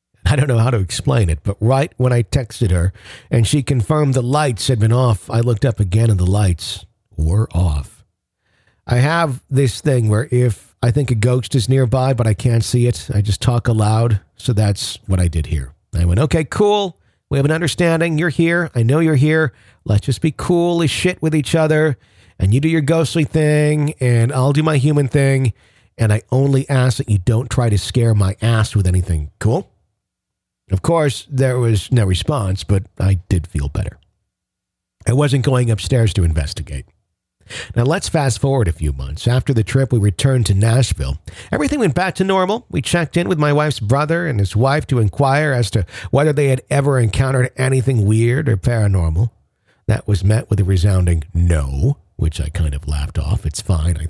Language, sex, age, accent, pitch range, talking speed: English, male, 50-69, American, 100-140 Hz, 200 wpm